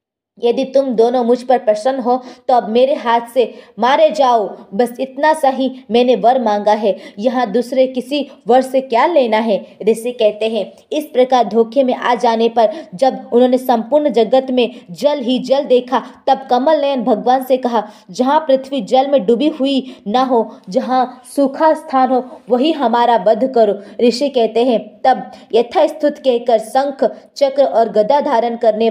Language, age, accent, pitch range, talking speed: Hindi, 20-39, native, 220-260 Hz, 170 wpm